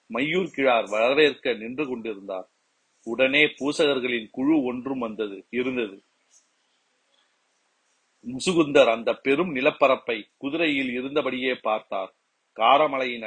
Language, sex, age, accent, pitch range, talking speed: Tamil, male, 40-59, native, 120-150 Hz, 50 wpm